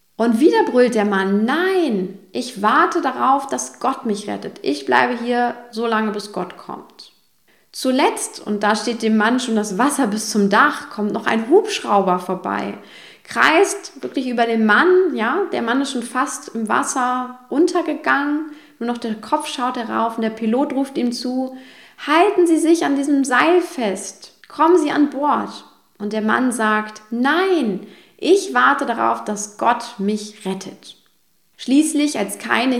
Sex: female